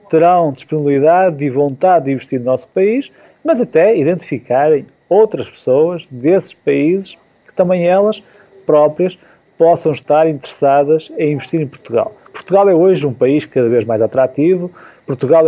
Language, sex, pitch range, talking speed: Portuguese, male, 145-185 Hz, 145 wpm